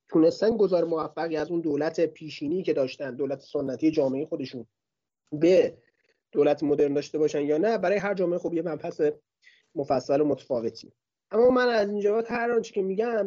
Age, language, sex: 30-49, Persian, male